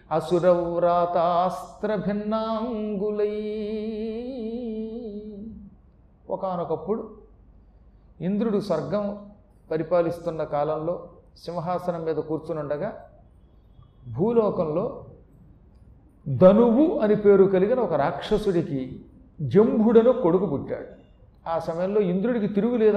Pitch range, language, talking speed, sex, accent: 160-210 Hz, Telugu, 65 wpm, male, native